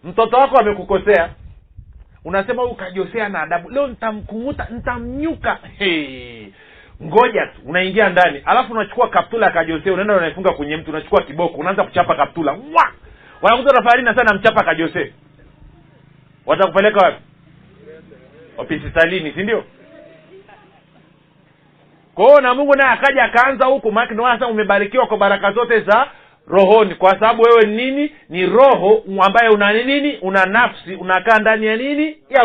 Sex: male